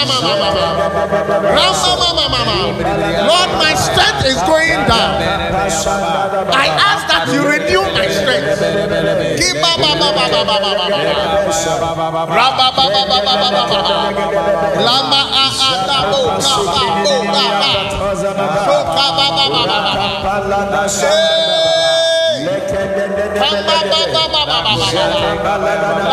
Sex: male